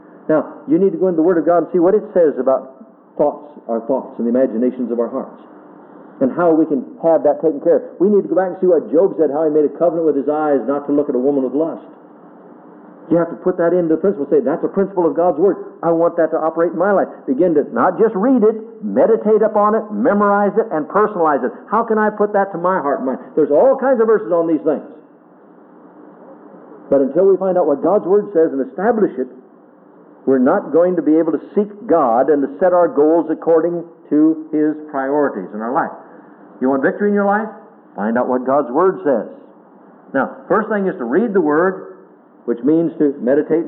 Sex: male